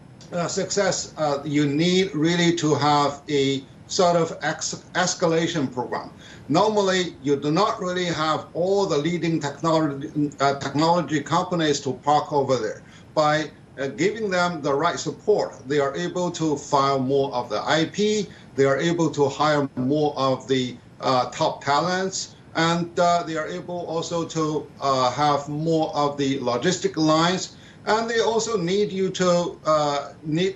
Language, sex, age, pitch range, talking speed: English, male, 50-69, 145-175 Hz, 155 wpm